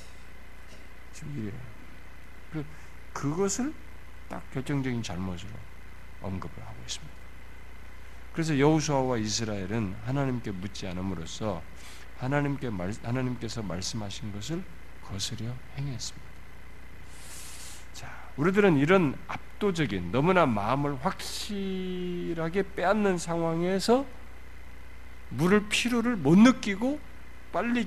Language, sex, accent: Korean, male, native